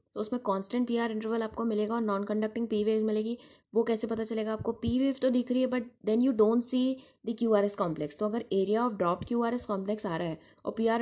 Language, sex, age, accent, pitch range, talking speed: English, female, 20-39, Indian, 195-230 Hz, 210 wpm